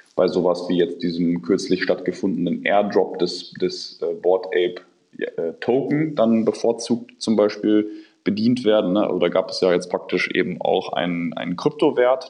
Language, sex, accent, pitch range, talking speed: German, male, German, 90-105 Hz, 150 wpm